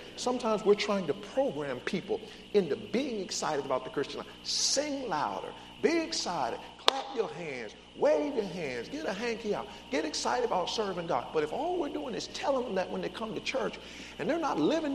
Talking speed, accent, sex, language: 200 wpm, American, male, English